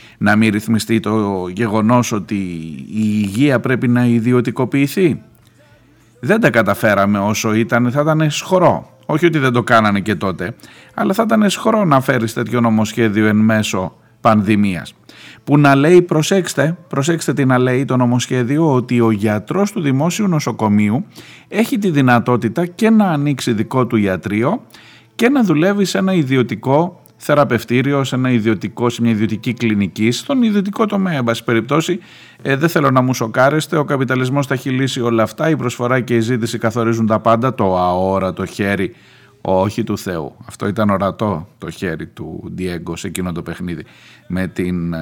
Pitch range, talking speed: 105-140 Hz, 160 wpm